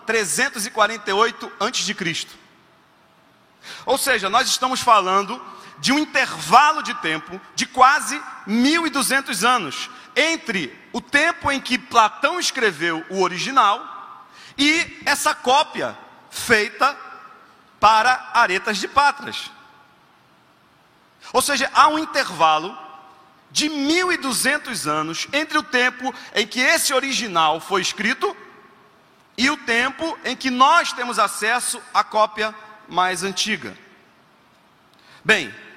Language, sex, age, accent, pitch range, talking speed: Portuguese, male, 40-59, Brazilian, 200-270 Hz, 105 wpm